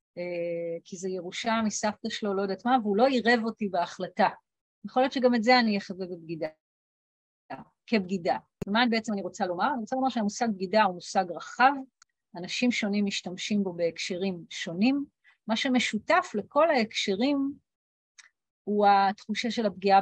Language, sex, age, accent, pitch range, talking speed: Hebrew, female, 40-59, native, 185-235 Hz, 145 wpm